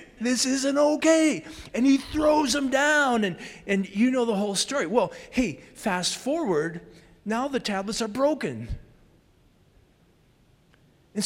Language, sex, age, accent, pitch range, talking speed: English, male, 50-69, American, 140-220 Hz, 135 wpm